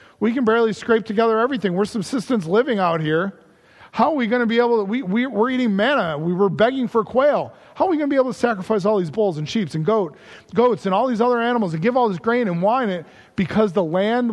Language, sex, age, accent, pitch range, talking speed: English, male, 40-59, American, 170-220 Hz, 260 wpm